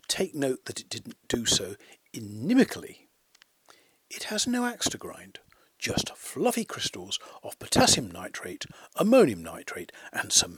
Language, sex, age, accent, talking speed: English, male, 50-69, British, 135 wpm